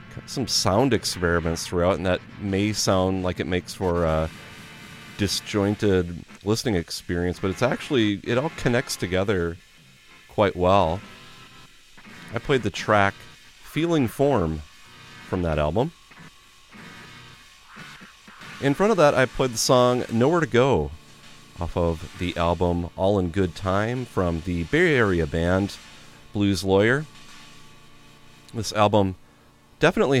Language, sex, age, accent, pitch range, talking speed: English, male, 30-49, American, 80-105 Hz, 125 wpm